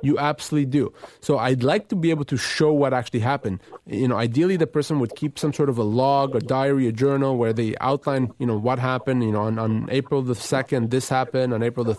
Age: 30-49